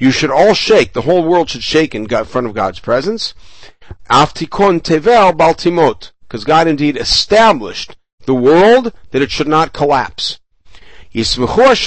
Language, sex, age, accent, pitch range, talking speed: English, male, 60-79, American, 110-160 Hz, 125 wpm